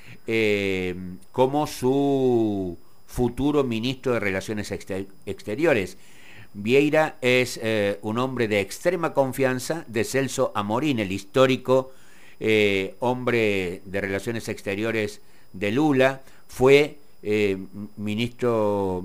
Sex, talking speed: male, 100 wpm